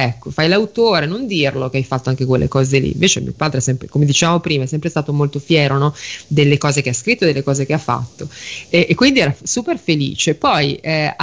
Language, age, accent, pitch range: Italian, 30-49, native, 135-170 Hz